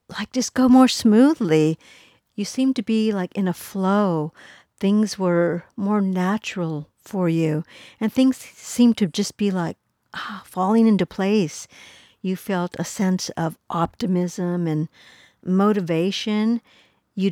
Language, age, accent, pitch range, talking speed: English, 50-69, American, 170-210 Hz, 135 wpm